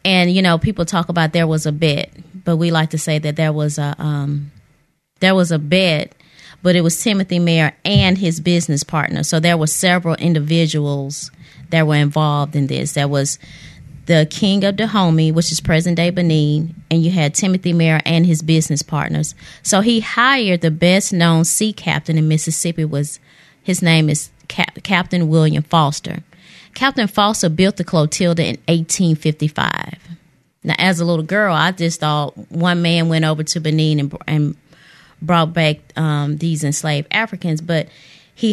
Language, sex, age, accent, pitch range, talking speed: English, female, 30-49, American, 155-175 Hz, 170 wpm